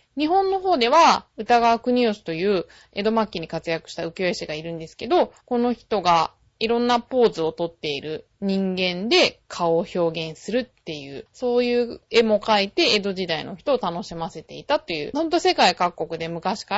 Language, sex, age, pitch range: Japanese, female, 20-39, 170-255 Hz